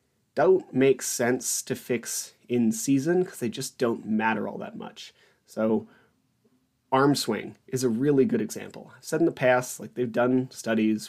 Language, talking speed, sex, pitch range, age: English, 175 wpm, male, 110-130 Hz, 30-49